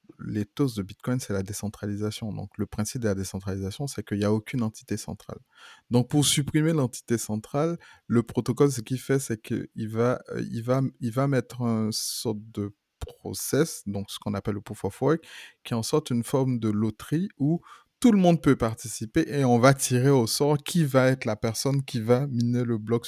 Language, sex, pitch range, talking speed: French, male, 110-135 Hz, 205 wpm